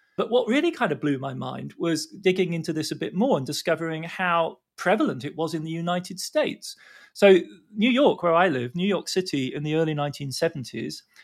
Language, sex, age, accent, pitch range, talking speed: English, male, 30-49, British, 140-190 Hz, 205 wpm